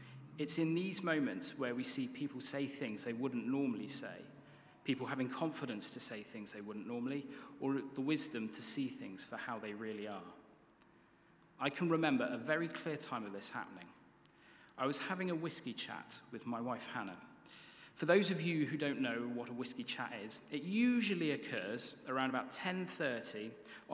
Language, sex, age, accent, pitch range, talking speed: English, male, 30-49, British, 130-170 Hz, 180 wpm